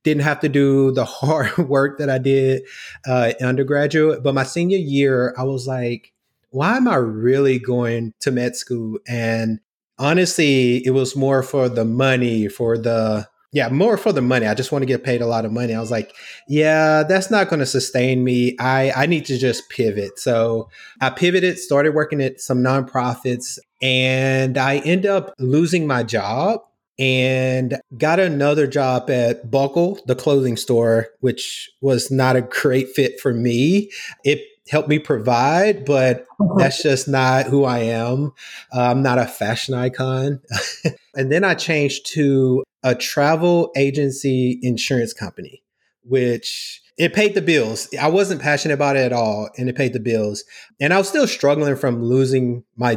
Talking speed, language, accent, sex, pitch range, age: 170 wpm, English, American, male, 125-145 Hz, 30-49